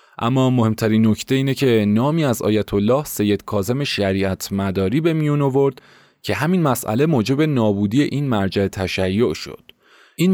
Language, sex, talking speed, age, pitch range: Persian, male, 140 wpm, 30-49, 105-135 Hz